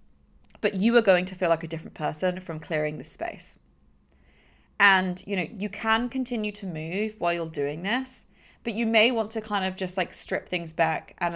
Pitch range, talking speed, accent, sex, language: 160-210 Hz, 205 wpm, British, female, English